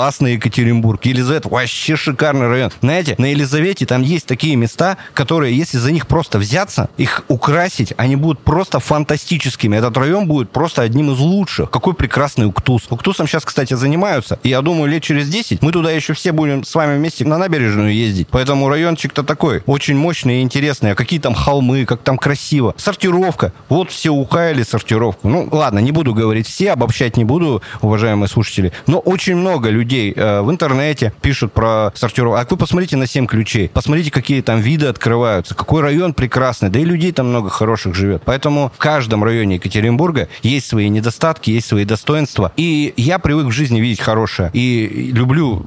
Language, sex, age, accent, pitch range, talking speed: Russian, male, 30-49, native, 115-150 Hz, 175 wpm